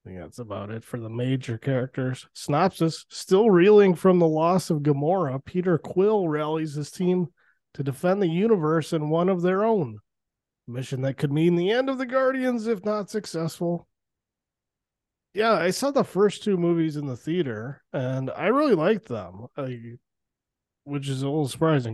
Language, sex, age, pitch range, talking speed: English, male, 20-39, 120-170 Hz, 175 wpm